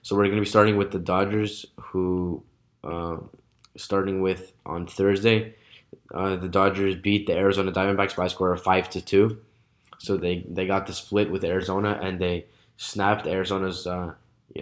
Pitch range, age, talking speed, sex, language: 95-105 Hz, 10-29, 175 wpm, male, English